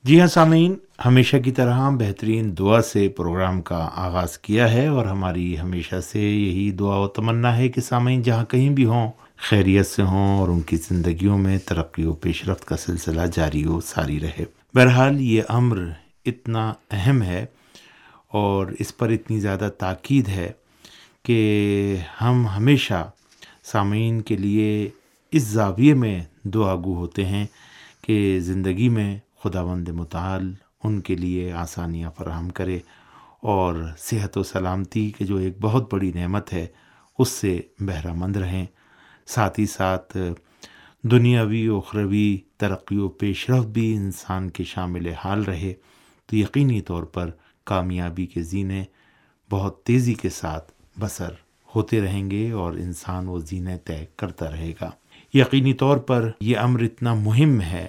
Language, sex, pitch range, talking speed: Urdu, male, 90-115 Hz, 150 wpm